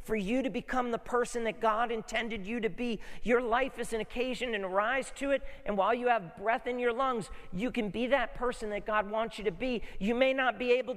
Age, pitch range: 40-59, 175-240 Hz